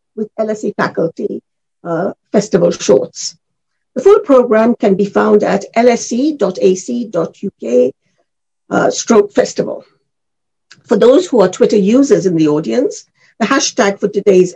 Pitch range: 200-295 Hz